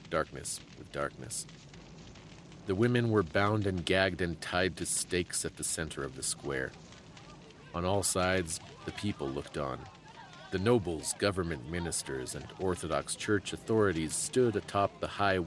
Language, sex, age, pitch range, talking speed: English, male, 40-59, 90-120 Hz, 145 wpm